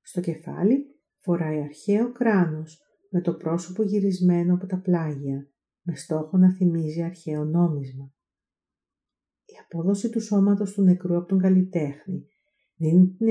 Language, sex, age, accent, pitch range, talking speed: Greek, female, 50-69, native, 145-185 Hz, 130 wpm